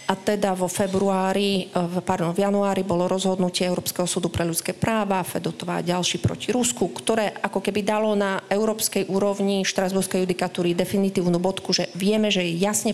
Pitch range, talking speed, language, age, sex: 175-195 Hz, 155 wpm, Slovak, 30-49, female